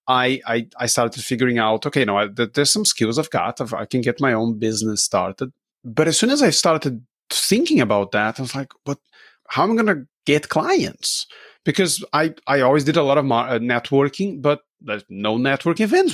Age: 30-49